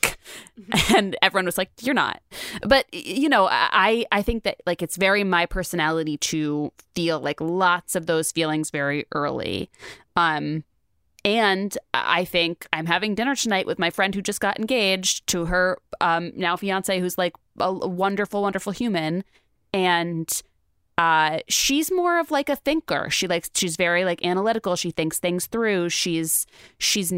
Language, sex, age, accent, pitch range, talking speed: English, female, 20-39, American, 155-190 Hz, 160 wpm